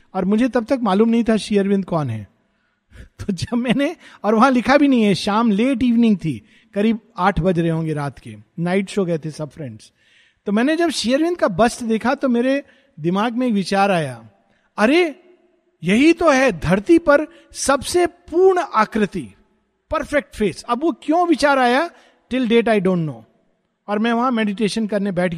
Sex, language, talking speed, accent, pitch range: male, Hindi, 180 wpm, native, 190-265 Hz